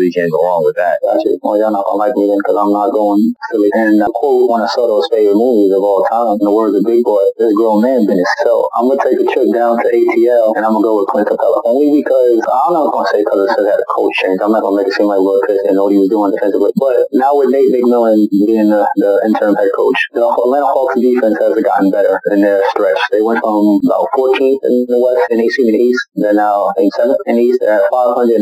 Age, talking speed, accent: 30-49, 260 wpm, American